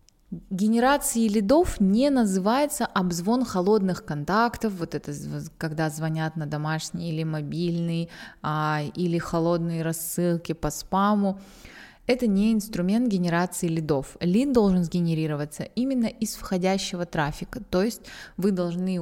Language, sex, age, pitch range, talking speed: Russian, female, 20-39, 165-225 Hz, 115 wpm